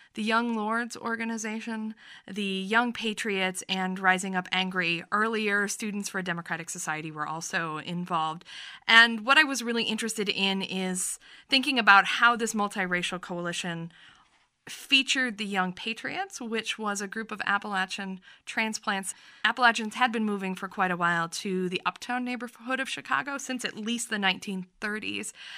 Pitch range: 190-230 Hz